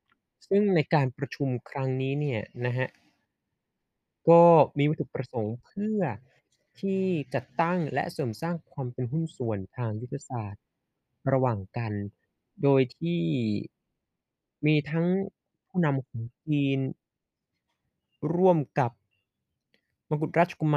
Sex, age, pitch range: male, 20-39, 125-155 Hz